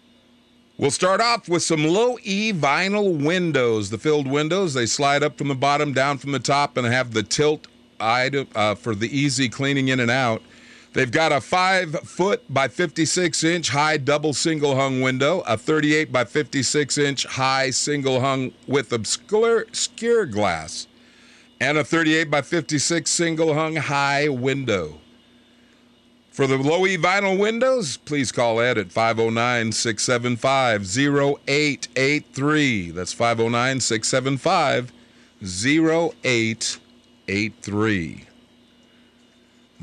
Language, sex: English, male